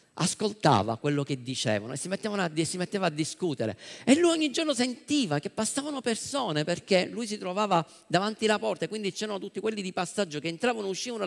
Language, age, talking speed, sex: Italian, 50-69, 200 wpm, male